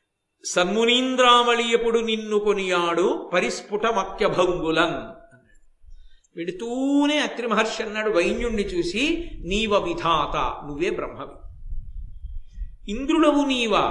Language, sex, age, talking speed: Telugu, male, 50-69, 75 wpm